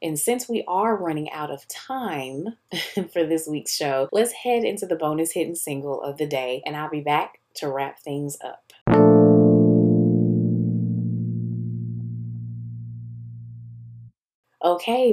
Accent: American